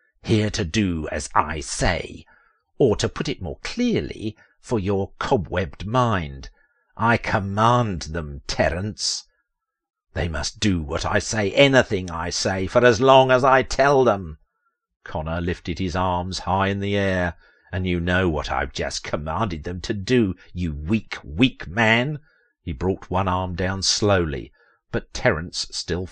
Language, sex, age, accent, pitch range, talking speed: English, male, 50-69, British, 85-110 Hz, 155 wpm